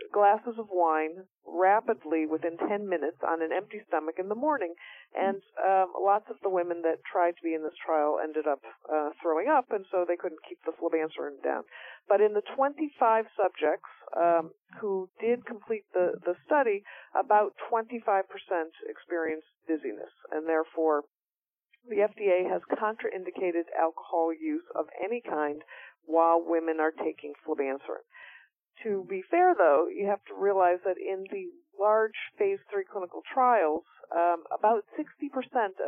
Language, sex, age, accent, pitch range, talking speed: English, female, 50-69, American, 165-220 Hz, 150 wpm